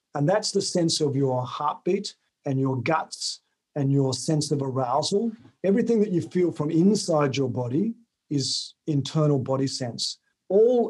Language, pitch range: English, 135-190 Hz